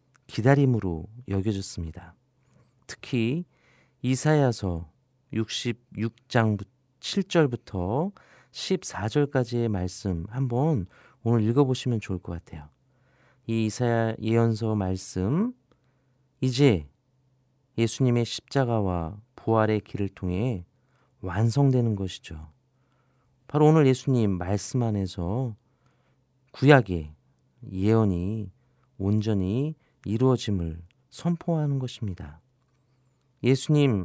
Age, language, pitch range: 40-59, Korean, 100-130 Hz